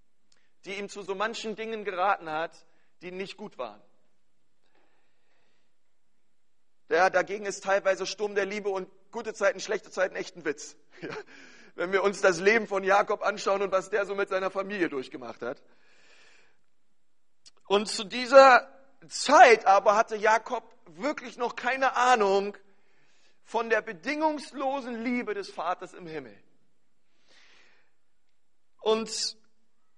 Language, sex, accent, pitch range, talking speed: German, male, German, 190-235 Hz, 130 wpm